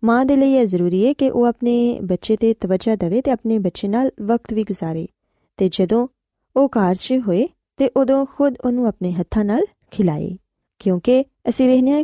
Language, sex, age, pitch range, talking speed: Punjabi, female, 20-39, 185-250 Hz, 180 wpm